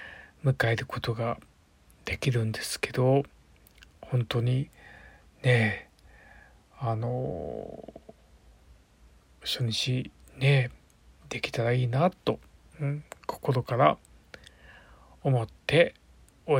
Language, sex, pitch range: Japanese, male, 100-130 Hz